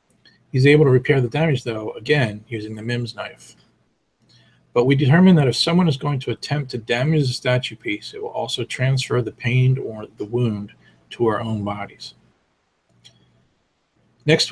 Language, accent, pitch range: English, American, 110-135 Hz